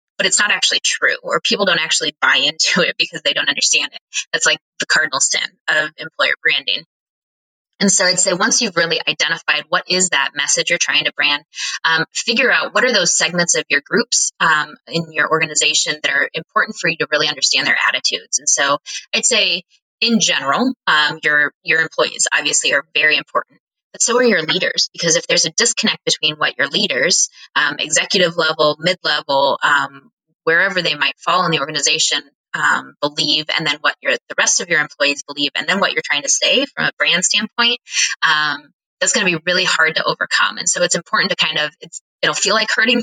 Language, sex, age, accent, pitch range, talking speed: English, female, 20-39, American, 150-205 Hz, 205 wpm